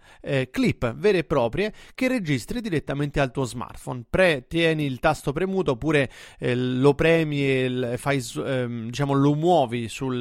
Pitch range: 130-175 Hz